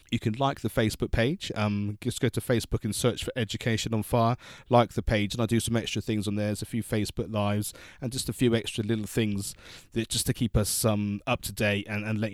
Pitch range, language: 100-115 Hz, English